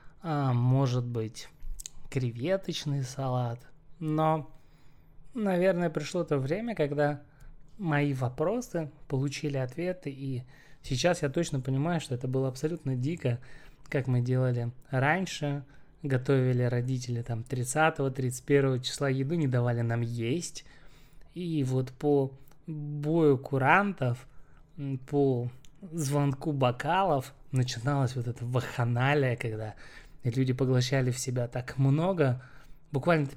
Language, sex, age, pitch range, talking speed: Russian, male, 20-39, 130-155 Hz, 105 wpm